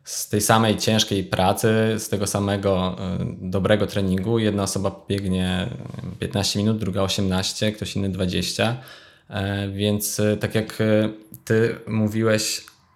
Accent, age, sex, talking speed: native, 20-39, male, 115 wpm